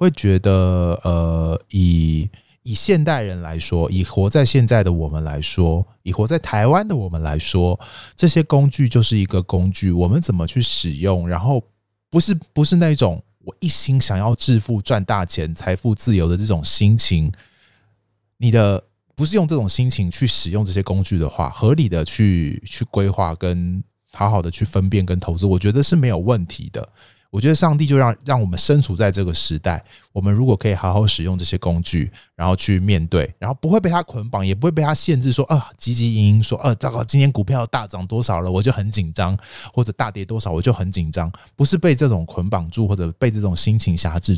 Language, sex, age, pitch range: Chinese, male, 20-39, 90-125 Hz